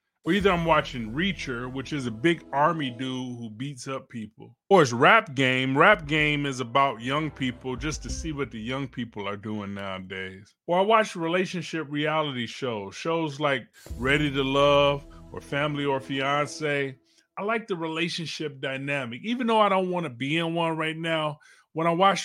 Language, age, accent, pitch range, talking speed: English, 30-49, American, 130-165 Hz, 185 wpm